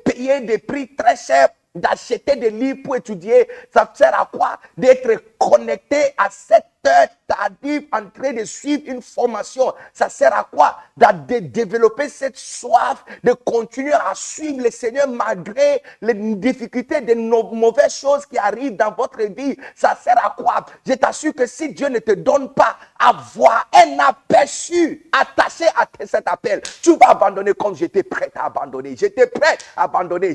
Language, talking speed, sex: French, 165 wpm, male